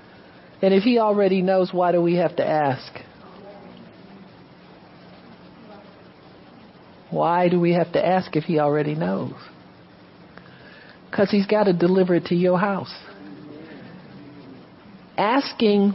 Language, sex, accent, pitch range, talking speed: English, male, American, 160-205 Hz, 115 wpm